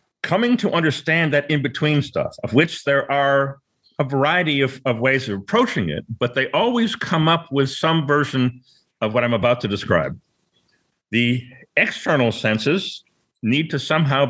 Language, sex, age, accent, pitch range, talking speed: English, male, 50-69, American, 120-150 Hz, 160 wpm